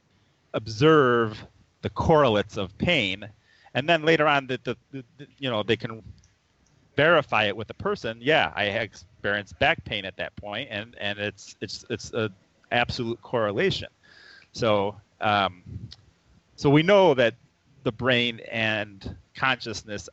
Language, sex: English, male